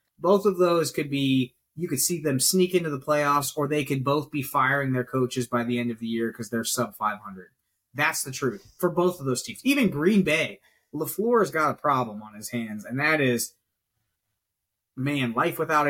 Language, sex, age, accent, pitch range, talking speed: English, male, 20-39, American, 120-155 Hz, 210 wpm